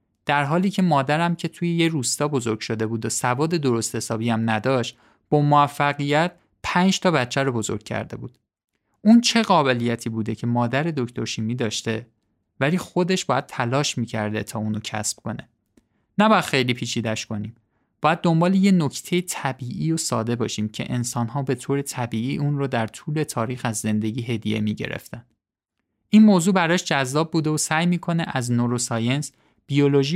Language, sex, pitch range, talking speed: Persian, male, 115-160 Hz, 165 wpm